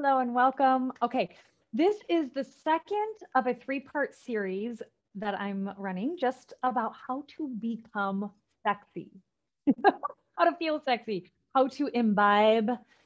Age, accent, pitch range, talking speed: 30-49, American, 190-265 Hz, 135 wpm